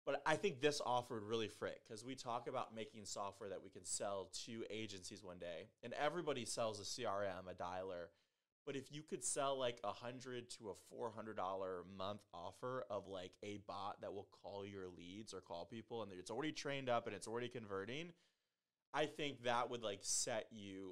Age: 30-49